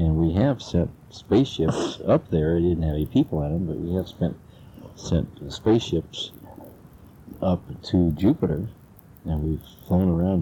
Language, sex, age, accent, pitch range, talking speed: English, male, 60-79, American, 80-95 Hz, 155 wpm